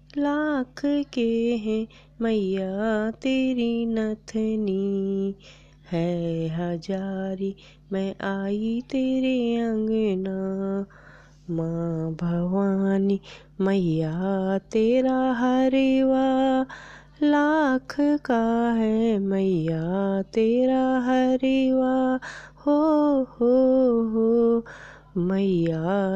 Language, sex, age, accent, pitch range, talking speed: Hindi, female, 20-39, native, 195-260 Hz, 60 wpm